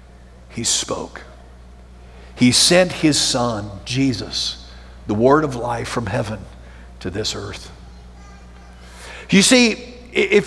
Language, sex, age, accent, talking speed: English, male, 50-69, American, 110 wpm